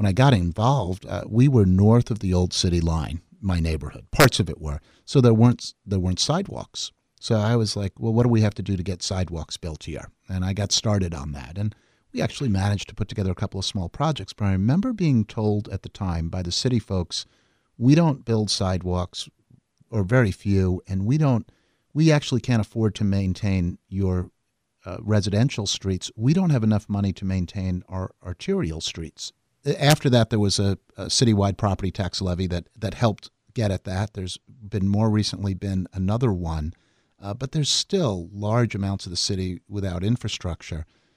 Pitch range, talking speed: 90-115 Hz, 200 wpm